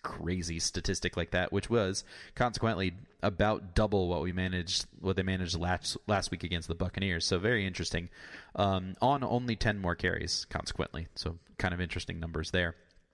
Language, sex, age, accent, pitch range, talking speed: English, male, 30-49, American, 90-105 Hz, 170 wpm